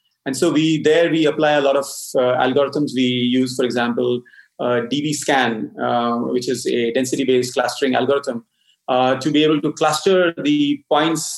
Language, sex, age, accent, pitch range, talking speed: English, male, 30-49, Indian, 125-150 Hz, 170 wpm